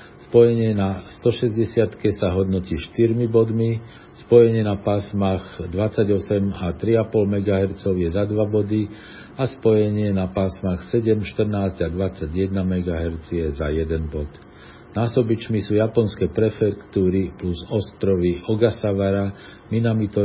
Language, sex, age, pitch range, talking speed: Slovak, male, 50-69, 90-105 Hz, 115 wpm